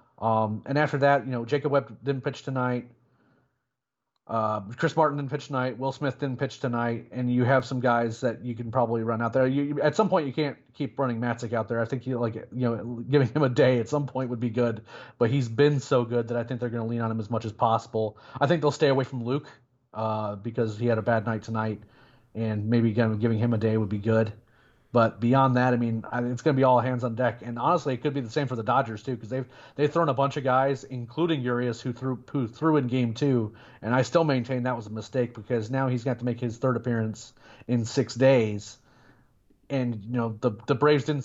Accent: American